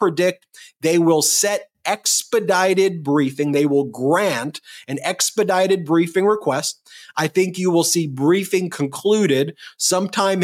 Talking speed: 120 wpm